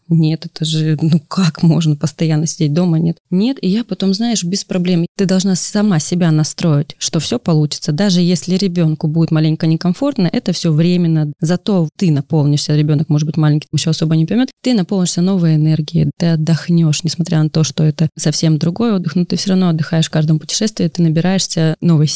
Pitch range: 160-190 Hz